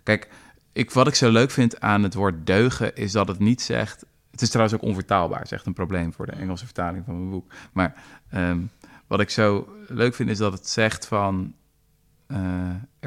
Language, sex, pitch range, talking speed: Dutch, male, 90-115 Hz, 210 wpm